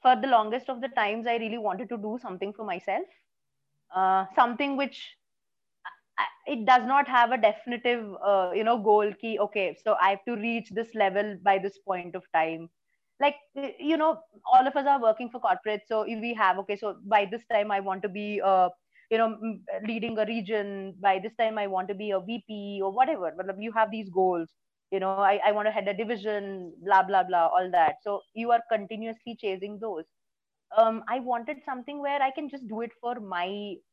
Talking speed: 210 wpm